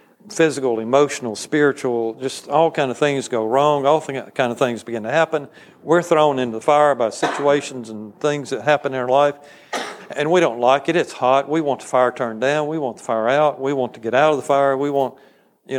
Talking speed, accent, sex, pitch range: 230 wpm, American, male, 120-145 Hz